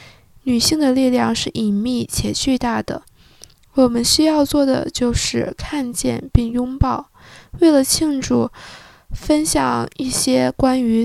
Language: Chinese